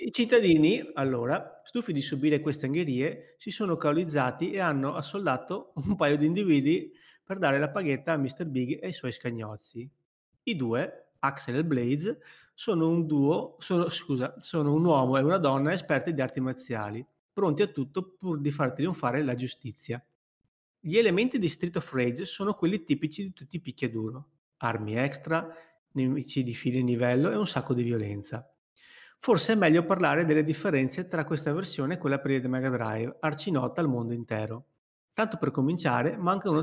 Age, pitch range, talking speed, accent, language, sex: 30-49, 130-170 Hz, 175 wpm, native, Italian, male